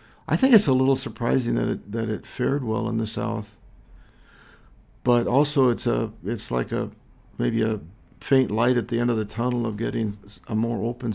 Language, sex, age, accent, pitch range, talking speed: English, male, 60-79, American, 110-135 Hz, 200 wpm